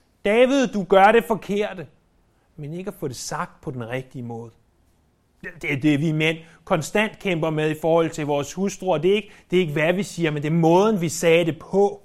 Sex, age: male, 30-49